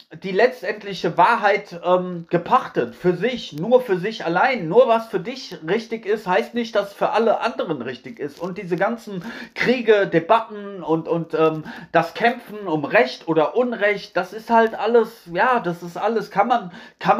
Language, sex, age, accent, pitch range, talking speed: German, male, 40-59, German, 170-220 Hz, 175 wpm